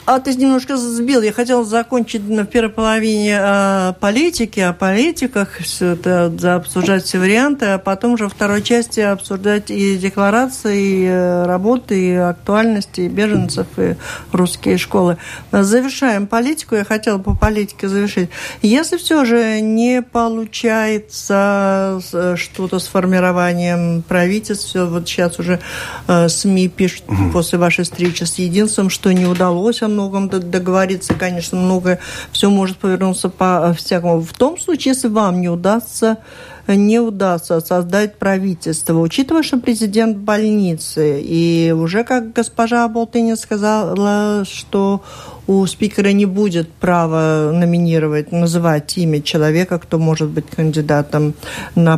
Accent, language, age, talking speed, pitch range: native, Russian, 50-69, 130 wpm, 175-220 Hz